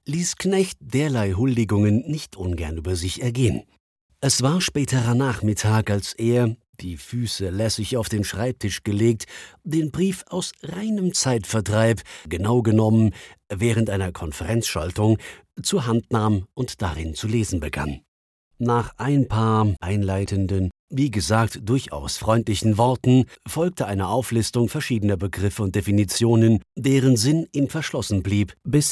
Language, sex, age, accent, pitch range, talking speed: German, male, 50-69, German, 100-130 Hz, 130 wpm